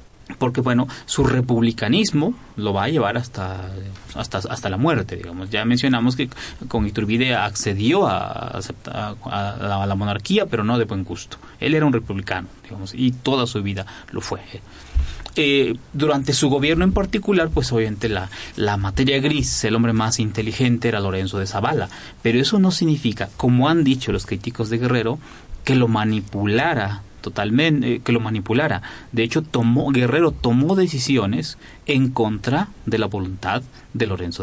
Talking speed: 155 wpm